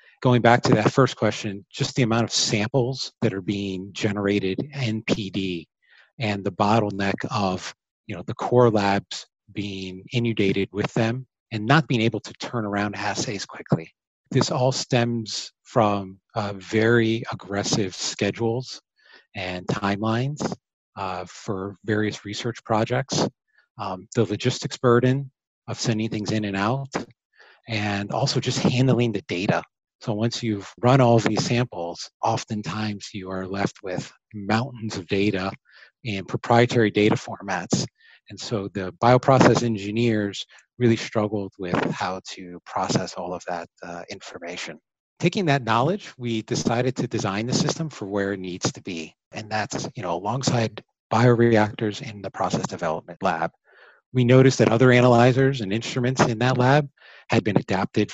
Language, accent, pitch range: English, American, 100-125 Hz